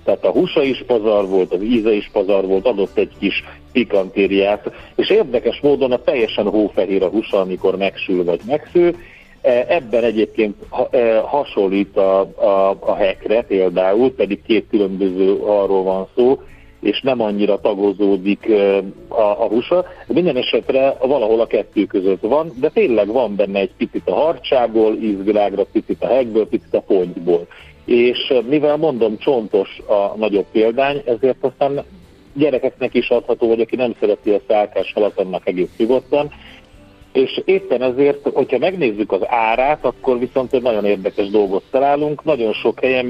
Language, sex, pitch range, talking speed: Hungarian, male, 100-145 Hz, 150 wpm